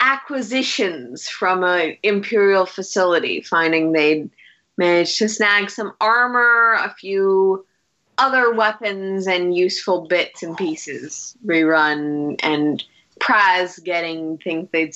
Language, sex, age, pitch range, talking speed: English, female, 20-39, 165-230 Hz, 110 wpm